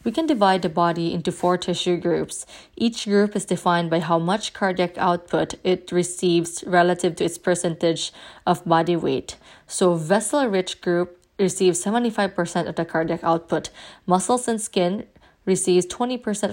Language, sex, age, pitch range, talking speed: English, female, 20-39, 170-200 Hz, 150 wpm